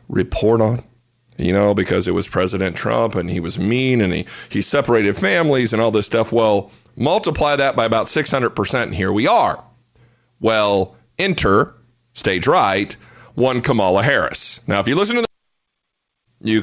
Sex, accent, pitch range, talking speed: male, American, 105-140 Hz, 165 wpm